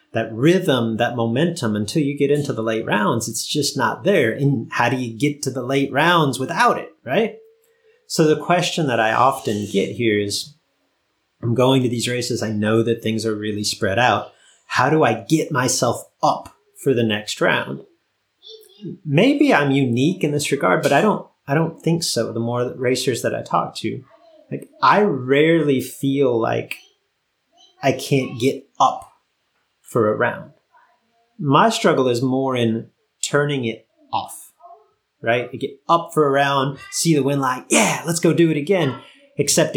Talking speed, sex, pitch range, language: 175 wpm, male, 120-170 Hz, English